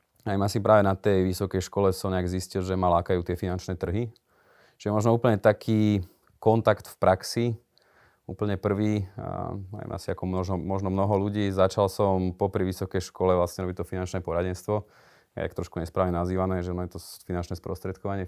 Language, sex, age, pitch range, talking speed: Slovak, male, 30-49, 90-100 Hz, 165 wpm